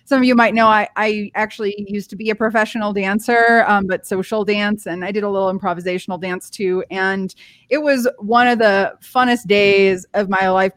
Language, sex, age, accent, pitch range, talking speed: English, female, 20-39, American, 195-235 Hz, 205 wpm